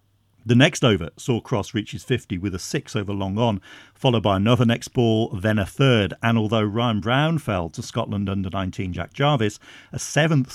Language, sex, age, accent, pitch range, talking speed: English, male, 40-59, British, 100-125 Hz, 200 wpm